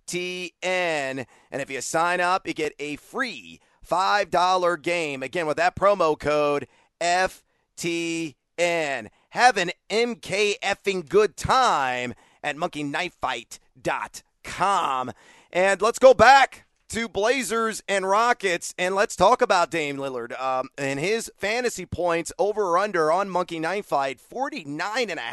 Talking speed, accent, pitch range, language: 125 wpm, American, 160-200 Hz, English